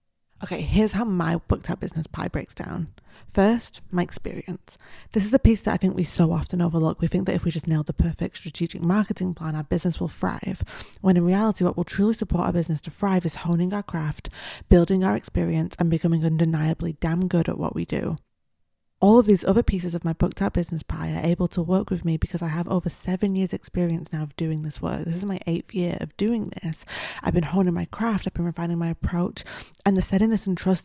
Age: 20-39